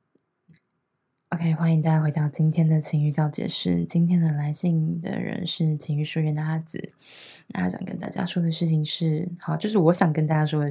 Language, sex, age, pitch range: Chinese, female, 20-39, 155-195 Hz